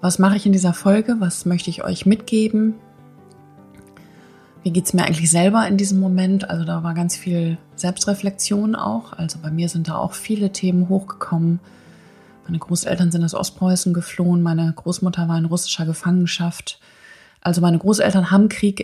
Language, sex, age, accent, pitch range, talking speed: German, female, 20-39, German, 170-195 Hz, 170 wpm